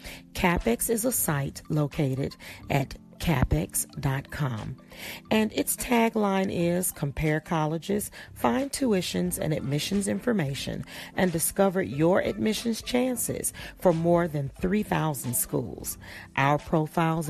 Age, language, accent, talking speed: 40-59, English, American, 105 wpm